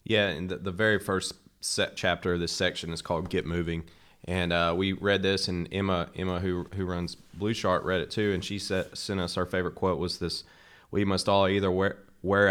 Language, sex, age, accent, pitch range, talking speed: English, male, 30-49, American, 90-100 Hz, 225 wpm